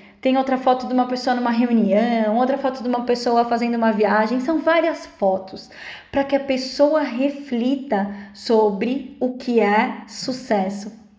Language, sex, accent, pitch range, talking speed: Portuguese, female, Brazilian, 220-275 Hz, 155 wpm